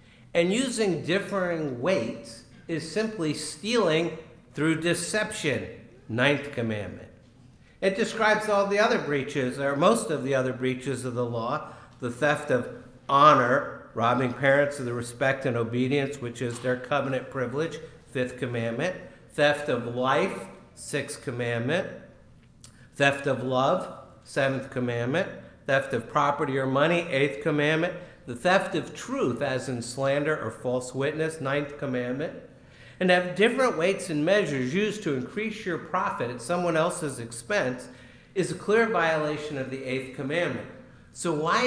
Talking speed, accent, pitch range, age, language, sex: 140 wpm, American, 125-175 Hz, 60-79, English, male